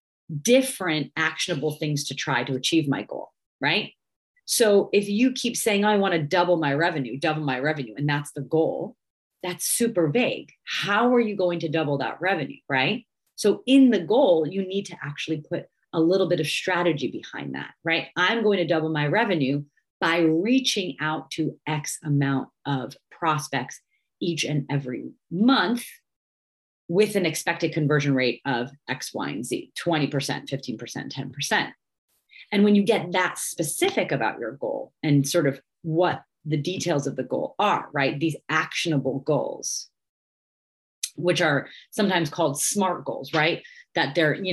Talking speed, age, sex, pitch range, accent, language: 165 wpm, 30-49, female, 145-180 Hz, American, English